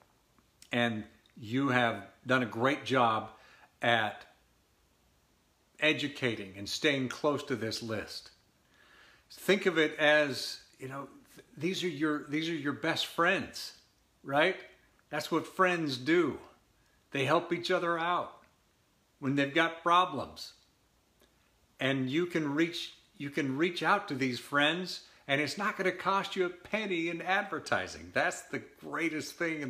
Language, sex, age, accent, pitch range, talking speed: English, male, 50-69, American, 120-160 Hz, 140 wpm